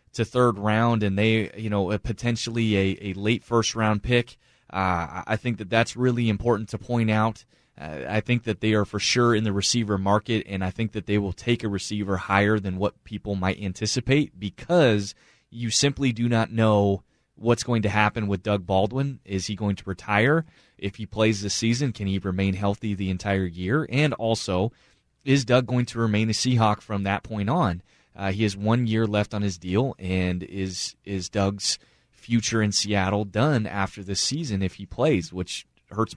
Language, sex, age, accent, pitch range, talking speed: English, male, 20-39, American, 100-120 Hz, 195 wpm